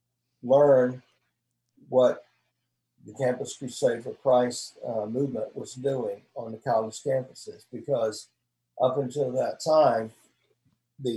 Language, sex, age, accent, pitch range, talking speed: English, male, 50-69, American, 115-140 Hz, 115 wpm